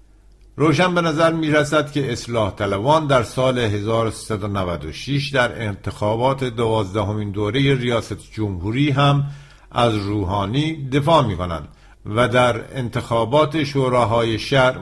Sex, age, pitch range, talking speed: male, 50-69, 110-140 Hz, 115 wpm